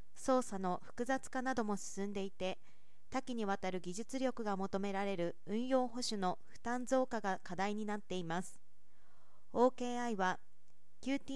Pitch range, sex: 195-250 Hz, female